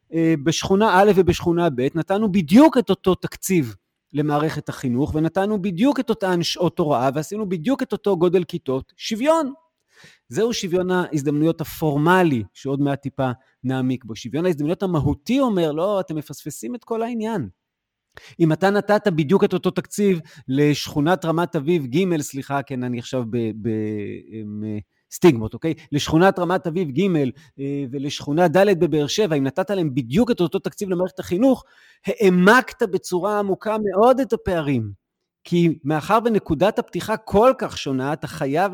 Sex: male